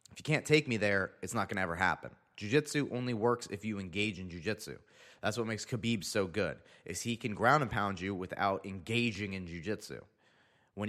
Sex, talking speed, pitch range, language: male, 210 wpm, 100-125 Hz, English